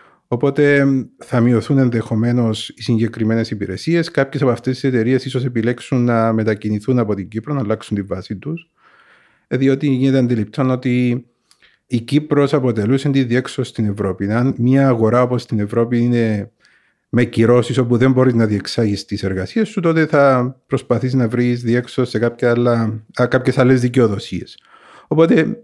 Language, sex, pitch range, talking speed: Greek, male, 115-140 Hz, 145 wpm